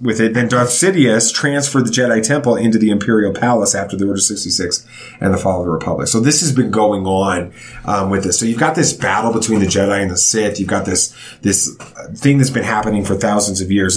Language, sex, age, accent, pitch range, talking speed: English, male, 30-49, American, 100-120 Hz, 235 wpm